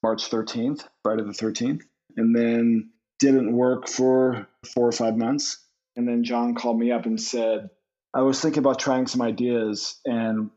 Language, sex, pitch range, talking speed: English, male, 110-130 Hz, 170 wpm